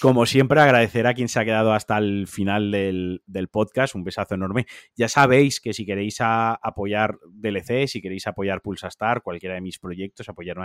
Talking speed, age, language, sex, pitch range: 185 wpm, 30-49, Spanish, male, 100-115 Hz